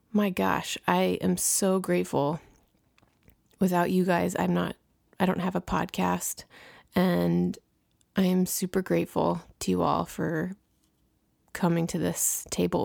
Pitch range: 165-205 Hz